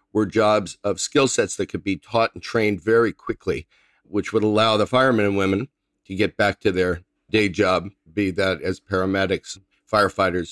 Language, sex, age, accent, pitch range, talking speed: English, male, 50-69, American, 90-105 Hz, 185 wpm